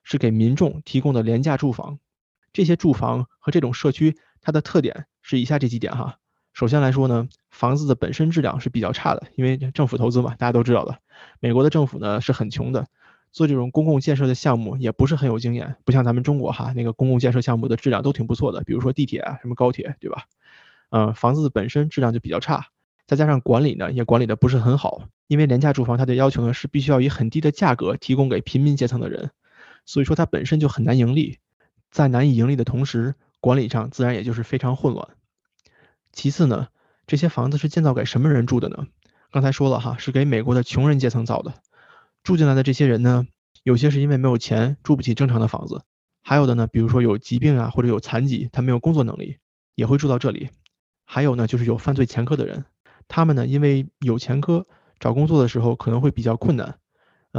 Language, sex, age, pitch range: Chinese, male, 20-39, 120-145 Hz